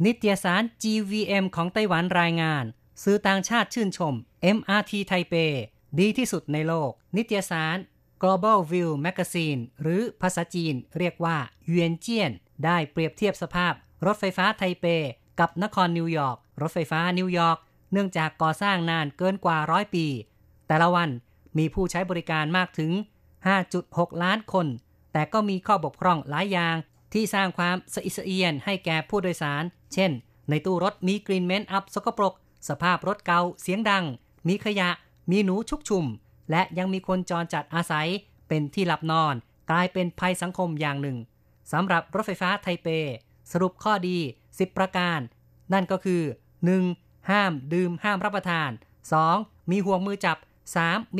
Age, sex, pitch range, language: 30-49, female, 160-195 Hz, Thai